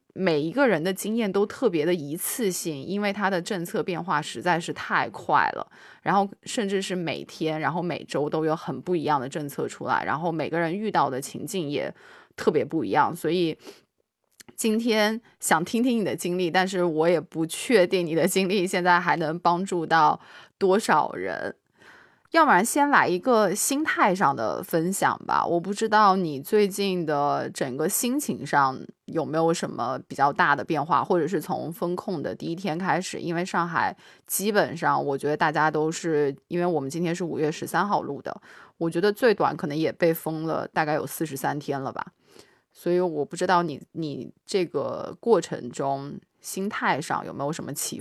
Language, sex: Chinese, female